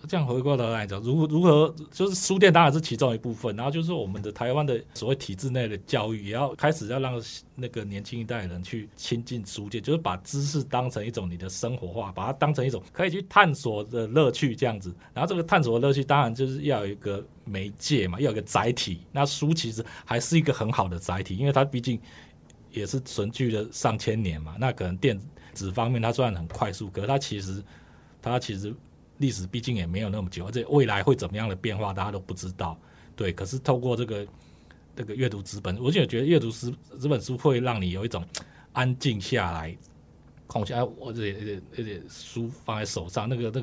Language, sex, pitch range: Chinese, male, 100-135 Hz